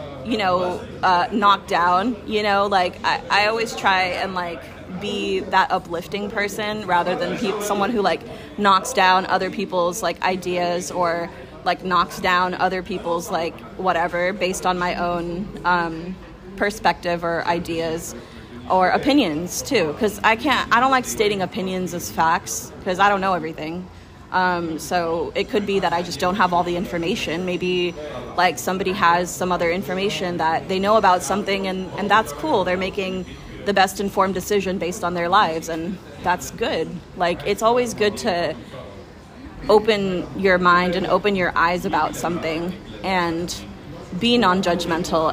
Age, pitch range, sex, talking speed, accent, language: 20-39, 175-195 Hz, female, 165 wpm, American, English